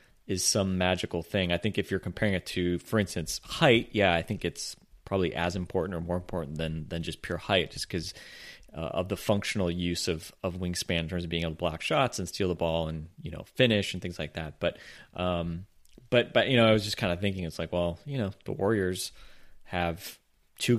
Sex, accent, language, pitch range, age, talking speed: male, American, English, 85-105 Hz, 30-49, 230 wpm